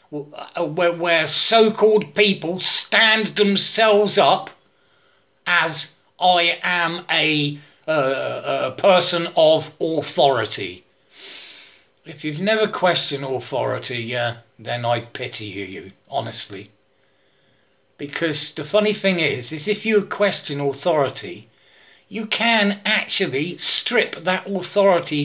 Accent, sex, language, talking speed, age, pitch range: British, male, English, 100 wpm, 40-59, 145-210 Hz